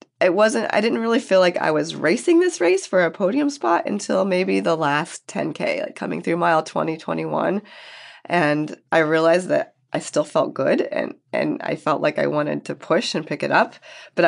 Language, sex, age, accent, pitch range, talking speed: English, female, 20-39, American, 150-185 Hz, 205 wpm